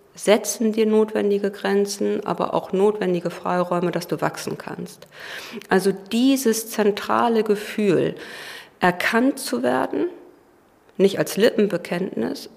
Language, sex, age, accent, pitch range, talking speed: German, female, 50-69, German, 180-215 Hz, 105 wpm